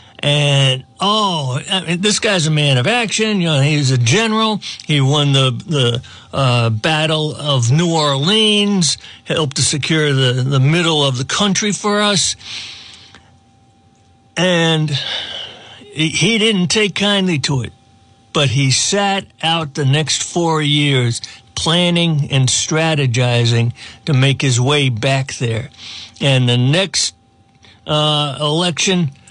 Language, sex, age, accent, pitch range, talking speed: English, male, 60-79, American, 120-165 Hz, 130 wpm